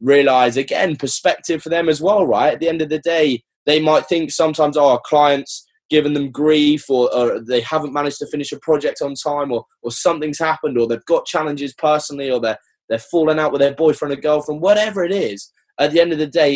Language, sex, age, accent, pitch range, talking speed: English, male, 20-39, British, 115-155 Hz, 230 wpm